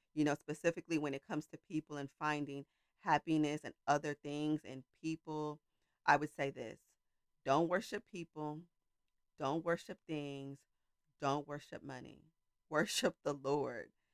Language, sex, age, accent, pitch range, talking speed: English, female, 40-59, American, 140-155 Hz, 135 wpm